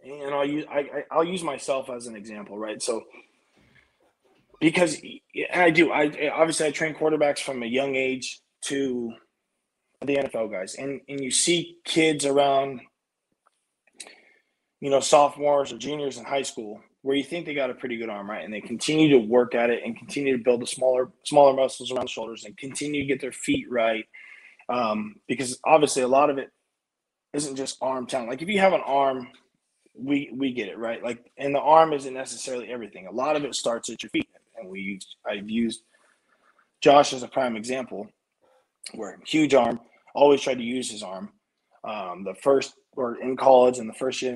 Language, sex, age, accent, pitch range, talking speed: English, male, 20-39, American, 120-145 Hz, 195 wpm